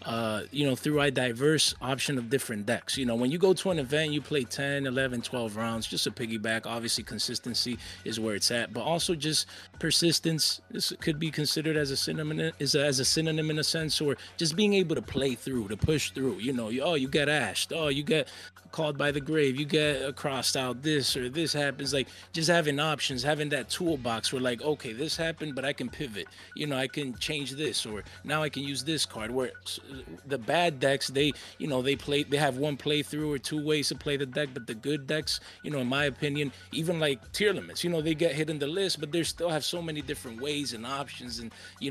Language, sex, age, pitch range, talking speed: English, male, 20-39, 115-150 Hz, 240 wpm